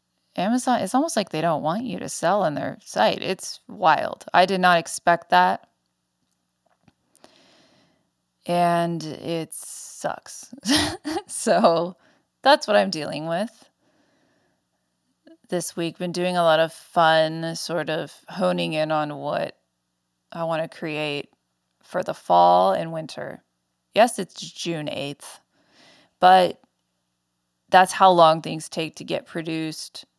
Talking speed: 130 wpm